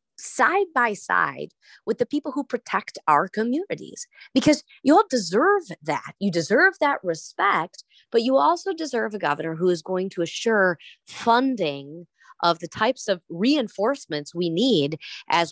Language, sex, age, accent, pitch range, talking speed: English, female, 30-49, American, 160-245 Hz, 150 wpm